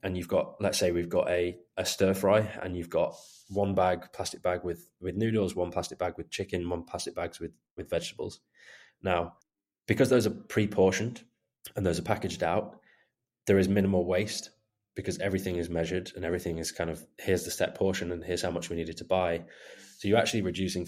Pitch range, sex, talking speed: 90-100 Hz, male, 205 wpm